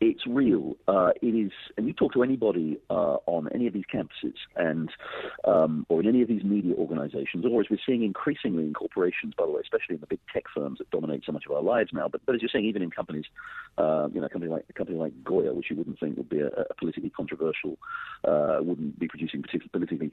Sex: male